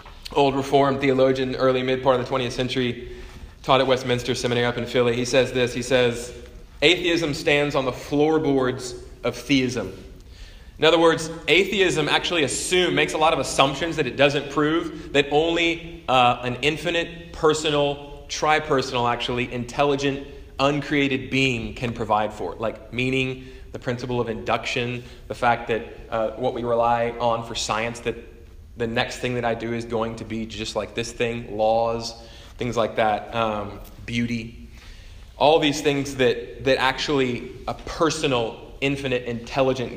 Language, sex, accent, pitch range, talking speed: English, male, American, 115-140 Hz, 160 wpm